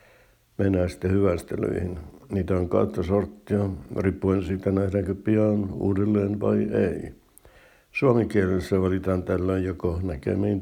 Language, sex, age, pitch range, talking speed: Finnish, male, 60-79, 90-100 Hz, 115 wpm